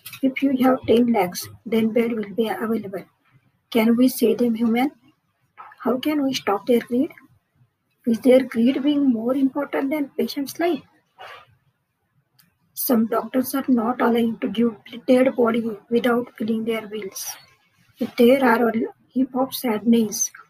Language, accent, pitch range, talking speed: English, Indian, 225-255 Hz, 145 wpm